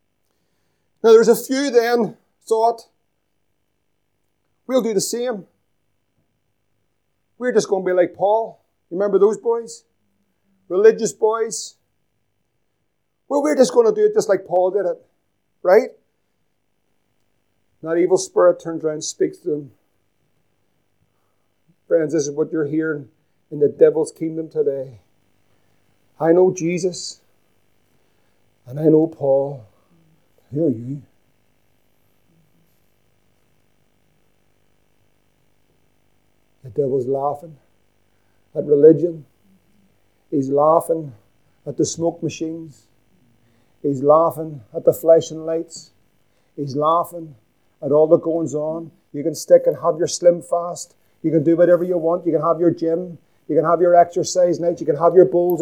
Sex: male